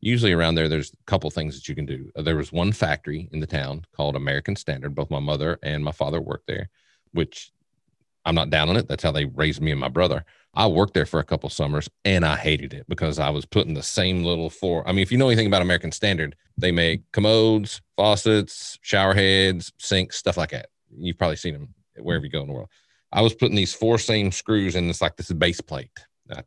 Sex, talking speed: male, 240 wpm